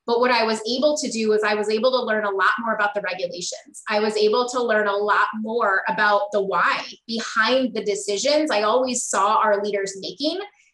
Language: English